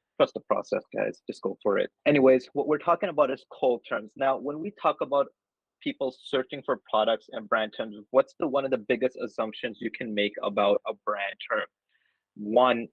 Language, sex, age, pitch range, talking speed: English, male, 20-39, 105-130 Hz, 200 wpm